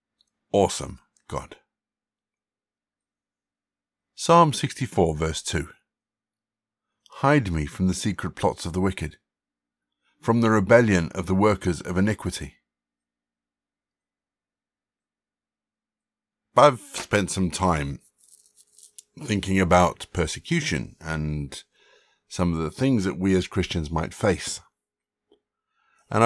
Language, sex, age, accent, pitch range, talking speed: English, male, 50-69, British, 85-110 Hz, 95 wpm